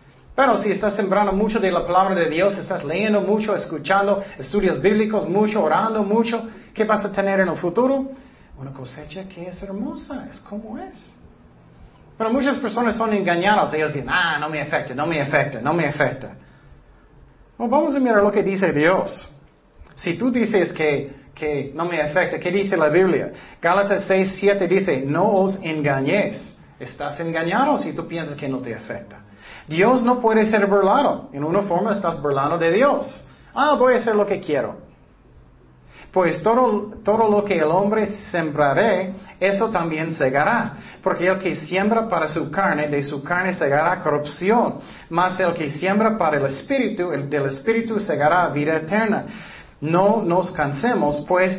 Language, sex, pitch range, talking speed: Spanish, male, 150-210 Hz, 170 wpm